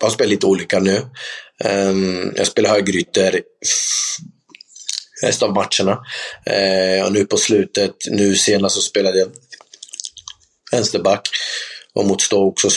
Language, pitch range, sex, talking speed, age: Swedish, 95-110 Hz, male, 120 wpm, 30-49